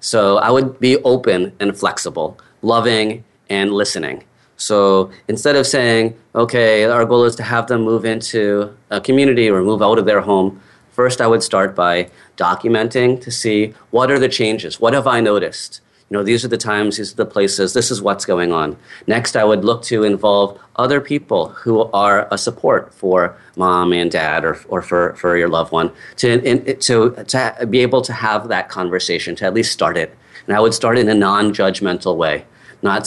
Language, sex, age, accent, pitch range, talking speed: English, male, 30-49, American, 100-120 Hz, 200 wpm